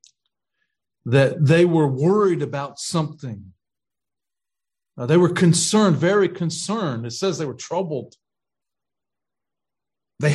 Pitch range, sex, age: 145-180 Hz, male, 50-69